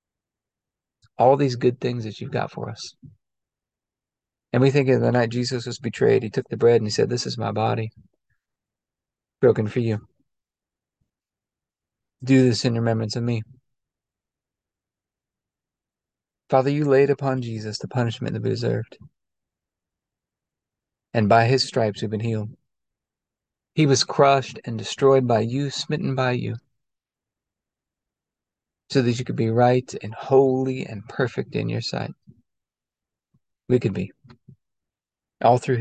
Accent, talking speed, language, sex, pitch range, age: American, 140 wpm, English, male, 110-130 Hz, 40-59